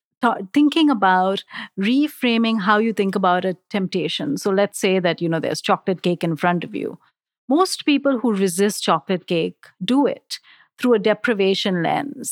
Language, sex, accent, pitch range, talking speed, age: English, female, Indian, 195-265 Hz, 165 wpm, 50-69